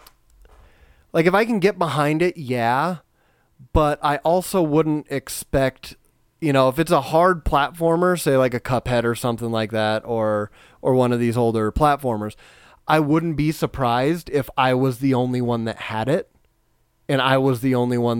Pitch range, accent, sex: 120-155 Hz, American, male